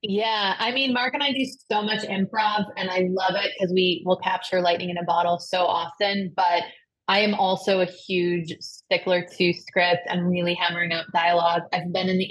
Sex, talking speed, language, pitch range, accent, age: female, 205 wpm, English, 175-210 Hz, American, 20-39